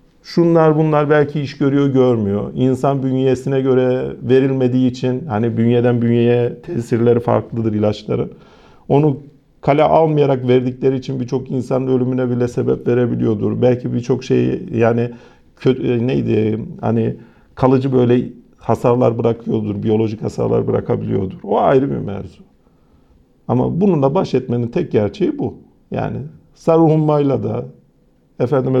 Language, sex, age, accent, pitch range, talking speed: Turkish, male, 50-69, native, 115-140 Hz, 120 wpm